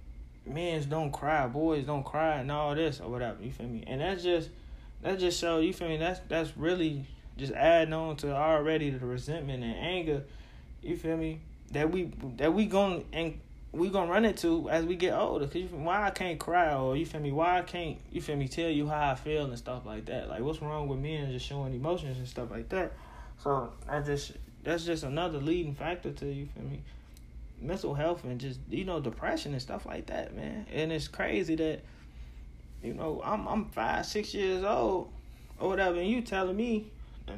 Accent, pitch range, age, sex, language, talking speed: American, 135-185 Hz, 20-39, male, English, 220 wpm